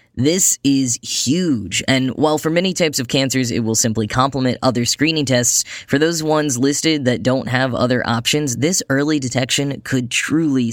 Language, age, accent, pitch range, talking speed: English, 10-29, American, 120-145 Hz, 175 wpm